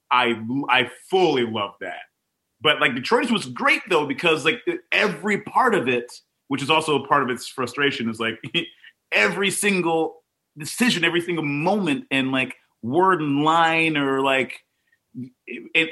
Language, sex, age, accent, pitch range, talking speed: English, male, 30-49, American, 130-180 Hz, 155 wpm